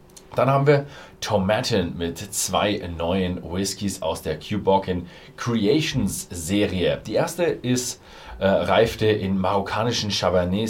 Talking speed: 120 wpm